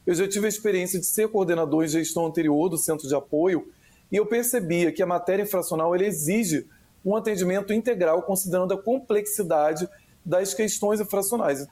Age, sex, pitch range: 40-59, male, 165-200 Hz